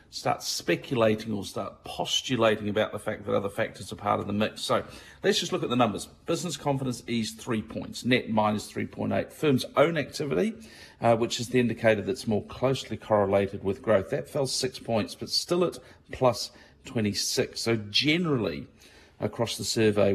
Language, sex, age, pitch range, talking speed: English, male, 40-59, 105-125 Hz, 175 wpm